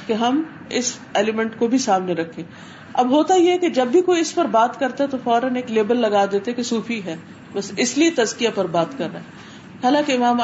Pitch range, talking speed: 200-250 Hz, 230 wpm